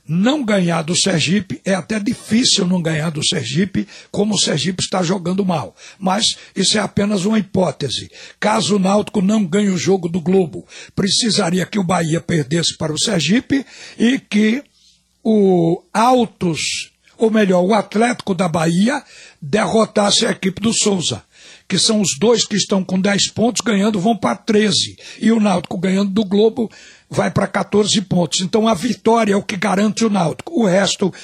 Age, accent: 60-79, Brazilian